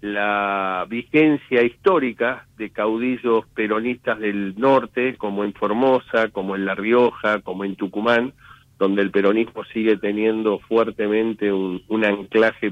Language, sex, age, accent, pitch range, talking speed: Italian, male, 50-69, Argentinian, 105-125 Hz, 125 wpm